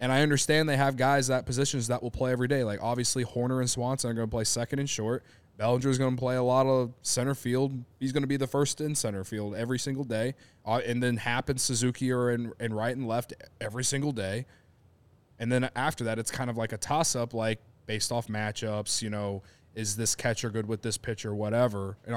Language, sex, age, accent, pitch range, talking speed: English, male, 20-39, American, 105-130 Hz, 240 wpm